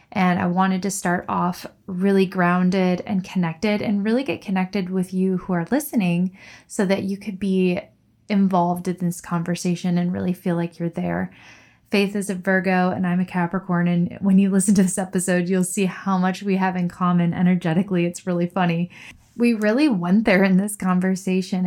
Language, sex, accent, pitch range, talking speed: English, female, American, 180-200 Hz, 190 wpm